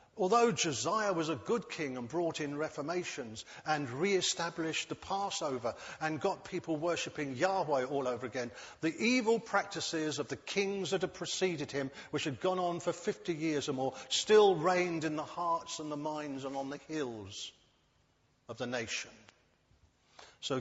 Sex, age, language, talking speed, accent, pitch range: male, 50-69, English, 165 wpm, British, 135-180 Hz